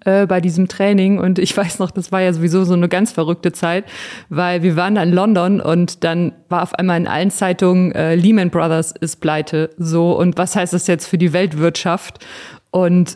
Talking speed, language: 205 wpm, German